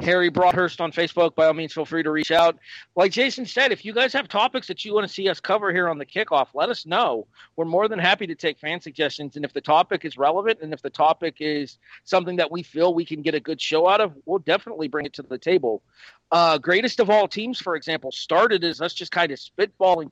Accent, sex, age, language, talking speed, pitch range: American, male, 40-59, English, 255 wpm, 145-195 Hz